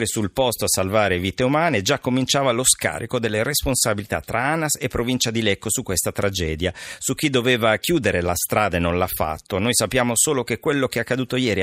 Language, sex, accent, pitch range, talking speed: Italian, male, native, 95-130 Hz, 205 wpm